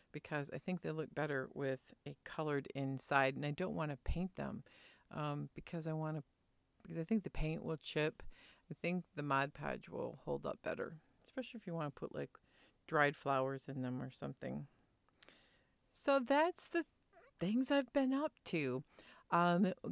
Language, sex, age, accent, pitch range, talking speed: English, female, 50-69, American, 145-205 Hz, 180 wpm